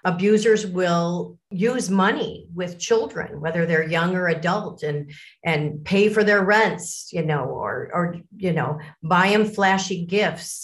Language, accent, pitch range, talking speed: English, American, 170-215 Hz, 150 wpm